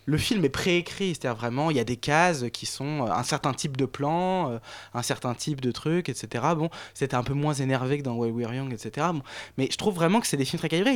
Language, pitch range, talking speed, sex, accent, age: French, 130-175 Hz, 280 wpm, male, French, 20-39